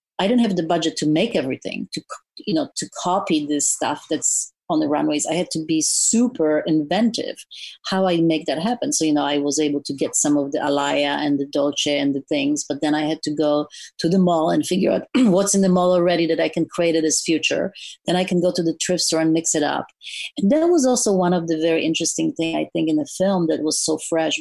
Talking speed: 255 wpm